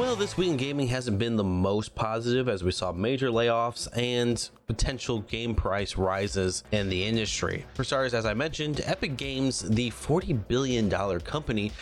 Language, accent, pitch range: English, American, 100-130 Hz